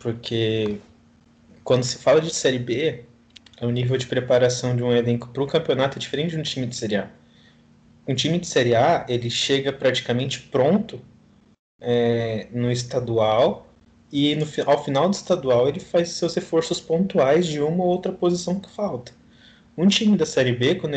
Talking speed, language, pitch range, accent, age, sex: 175 wpm, Portuguese, 115-150 Hz, Brazilian, 20-39, male